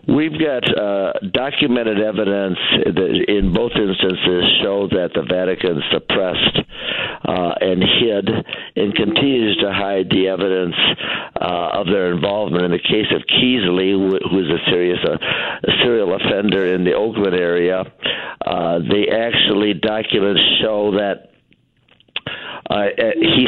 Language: English